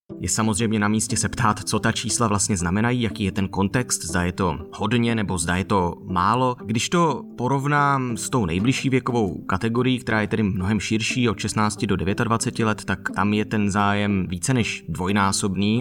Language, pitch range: Czech, 100-125 Hz